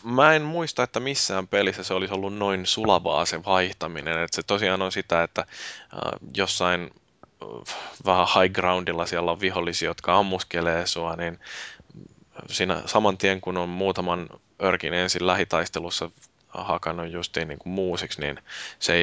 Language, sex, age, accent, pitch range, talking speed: Finnish, male, 20-39, native, 85-95 Hz, 145 wpm